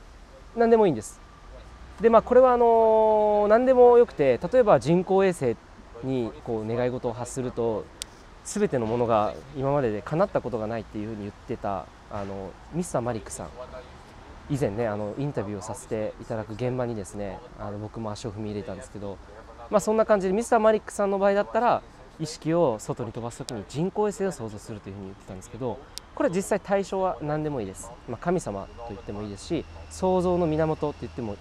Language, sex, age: Japanese, male, 20-39